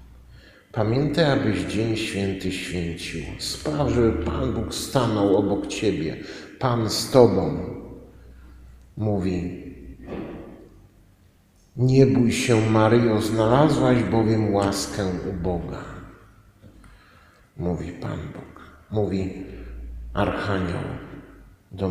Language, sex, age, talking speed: Polish, male, 50-69, 85 wpm